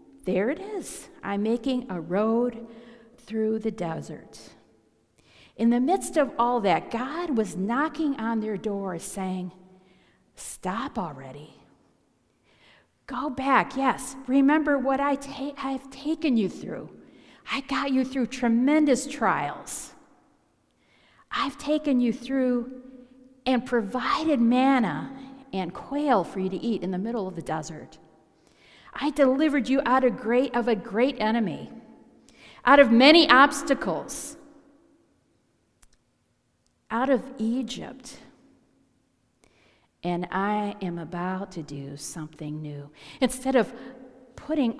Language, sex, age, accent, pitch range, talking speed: English, female, 50-69, American, 190-265 Hz, 115 wpm